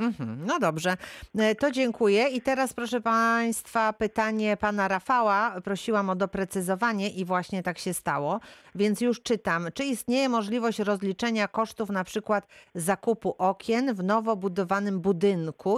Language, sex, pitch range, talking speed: Polish, female, 175-220 Hz, 135 wpm